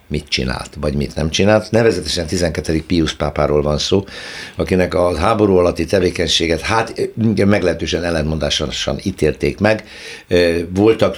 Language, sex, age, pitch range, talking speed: Hungarian, male, 60-79, 80-95 Hz, 125 wpm